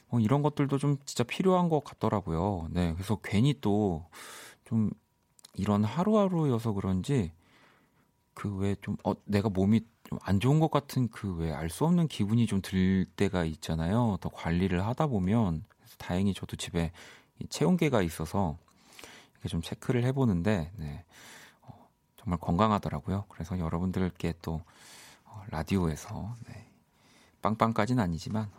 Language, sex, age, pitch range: Korean, male, 40-59, 90-120 Hz